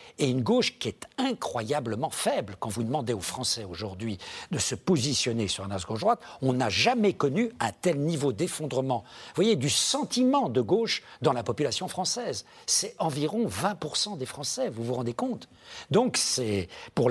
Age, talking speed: 60-79, 175 wpm